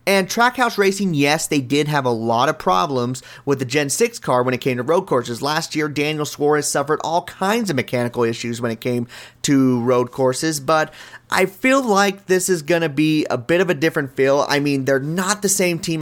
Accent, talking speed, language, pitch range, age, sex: American, 225 wpm, English, 135-185 Hz, 30-49, male